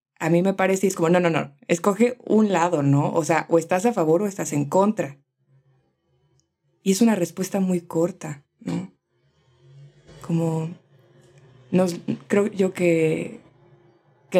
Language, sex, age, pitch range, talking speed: Spanish, female, 20-39, 165-185 Hz, 150 wpm